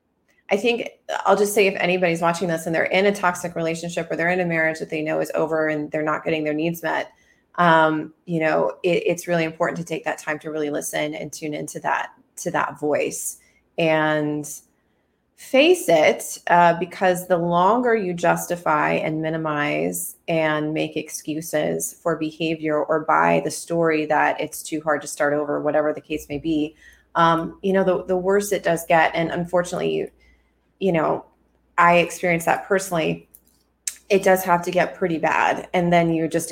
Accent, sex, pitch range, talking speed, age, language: American, female, 155-175 Hz, 185 wpm, 30-49, English